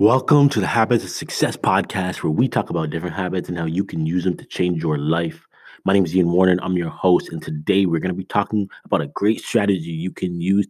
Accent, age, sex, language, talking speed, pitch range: American, 30-49, male, English, 250 wpm, 85-105 Hz